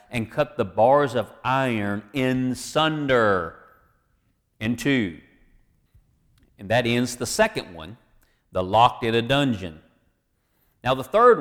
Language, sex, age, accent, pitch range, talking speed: English, male, 40-59, American, 110-140 Hz, 125 wpm